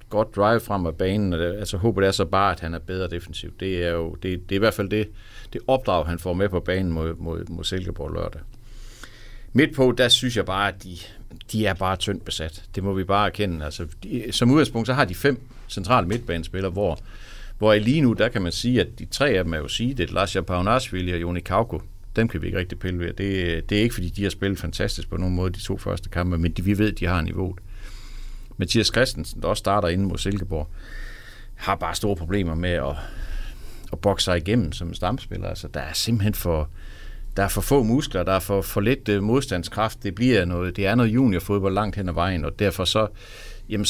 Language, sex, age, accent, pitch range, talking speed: Danish, male, 60-79, native, 85-110 Hz, 235 wpm